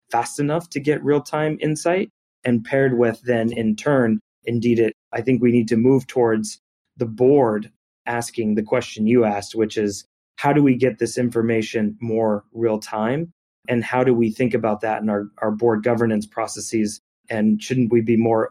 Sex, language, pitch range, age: male, English, 110-130 Hz, 30-49